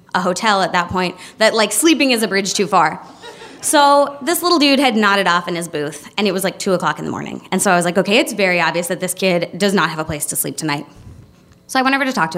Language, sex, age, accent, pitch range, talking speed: English, female, 20-39, American, 175-240 Hz, 285 wpm